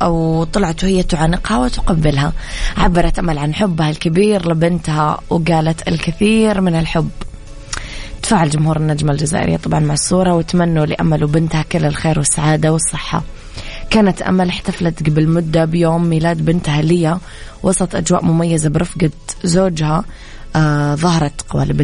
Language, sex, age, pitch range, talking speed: Arabic, female, 20-39, 160-185 Hz, 125 wpm